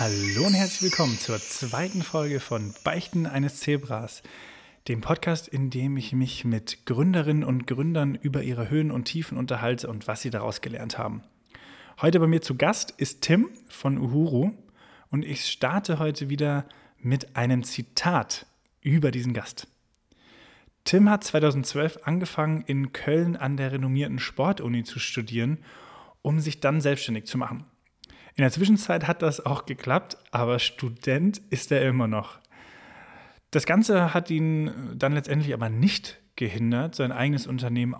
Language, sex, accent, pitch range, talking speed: German, male, German, 125-160 Hz, 150 wpm